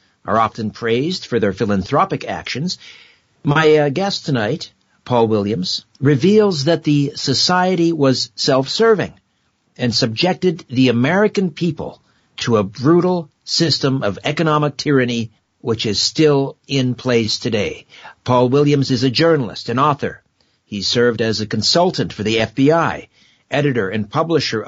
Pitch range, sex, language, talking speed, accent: 120-155 Hz, male, English, 135 wpm, American